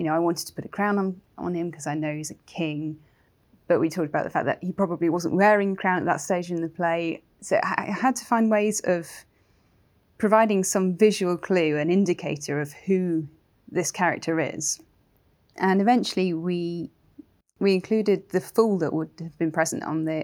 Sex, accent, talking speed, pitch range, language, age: female, British, 200 wpm, 160-190 Hz, English, 20-39